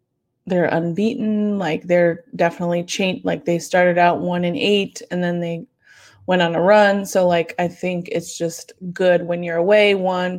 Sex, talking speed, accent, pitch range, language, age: female, 180 wpm, American, 170-195 Hz, English, 20-39